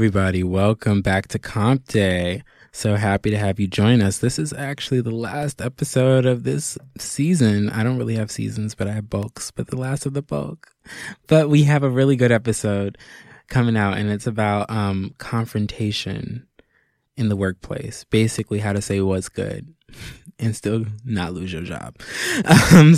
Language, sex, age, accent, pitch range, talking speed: English, male, 20-39, American, 105-130 Hz, 175 wpm